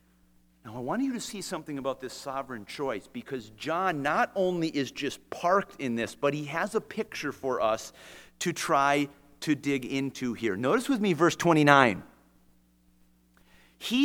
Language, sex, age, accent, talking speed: English, male, 40-59, American, 165 wpm